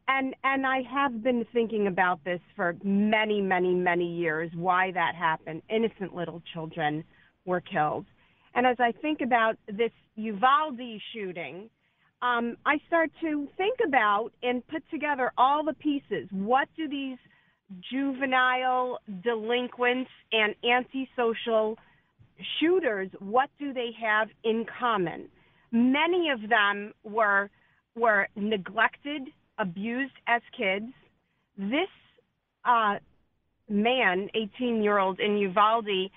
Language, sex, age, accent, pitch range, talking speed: English, female, 40-59, American, 195-255 Hz, 115 wpm